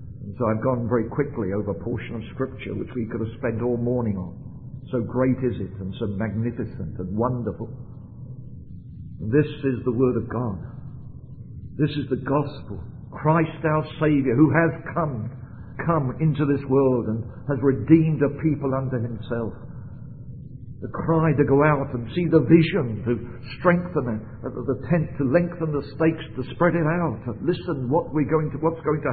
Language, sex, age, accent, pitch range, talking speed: English, male, 50-69, British, 120-155 Hz, 170 wpm